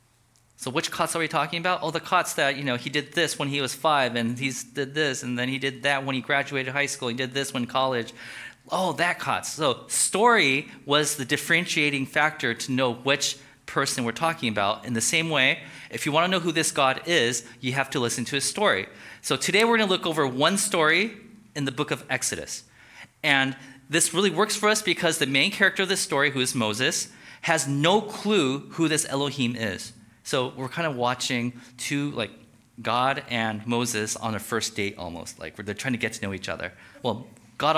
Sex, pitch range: male, 120-165 Hz